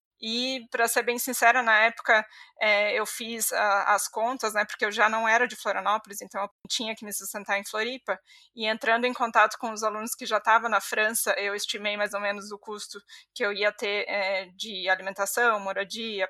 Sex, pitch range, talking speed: female, 215-250 Hz, 205 wpm